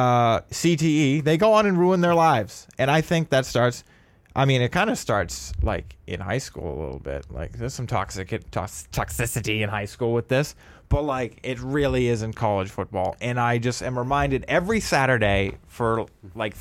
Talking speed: 200 wpm